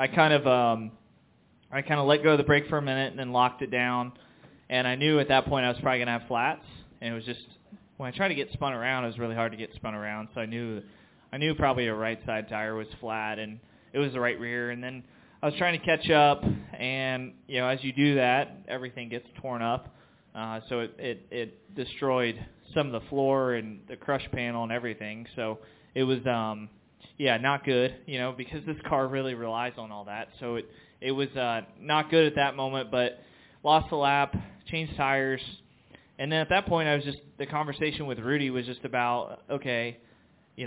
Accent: American